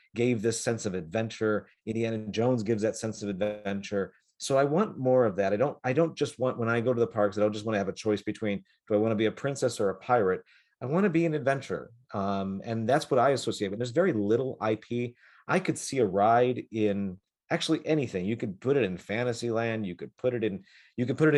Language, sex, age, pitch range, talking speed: English, male, 40-59, 100-125 Hz, 255 wpm